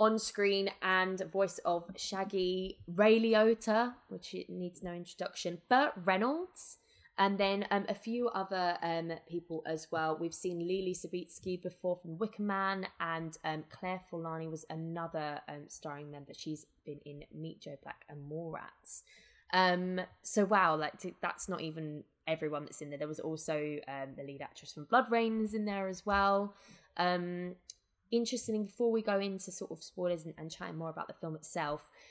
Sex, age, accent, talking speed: female, 20-39, British, 170 wpm